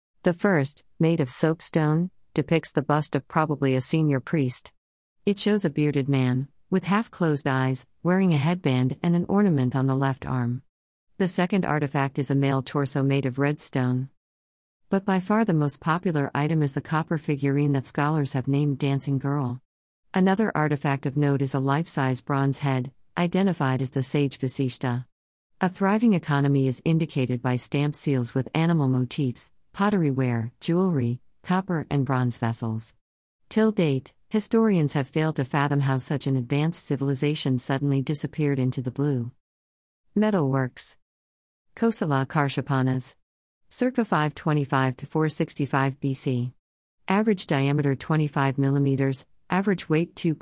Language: English